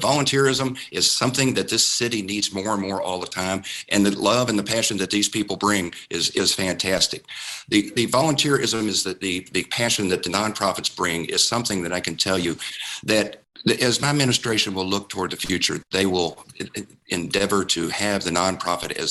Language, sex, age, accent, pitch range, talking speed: English, male, 50-69, American, 95-115 Hz, 195 wpm